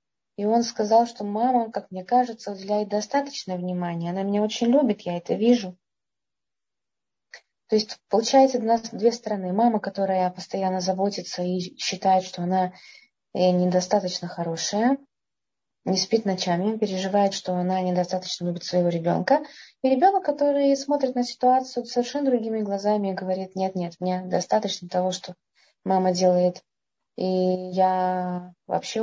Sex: female